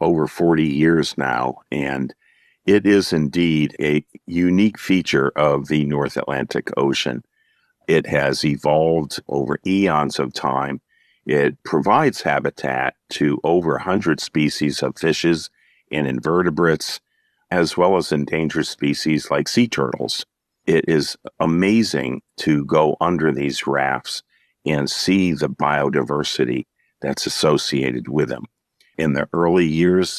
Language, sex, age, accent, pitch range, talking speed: English, male, 50-69, American, 75-85 Hz, 125 wpm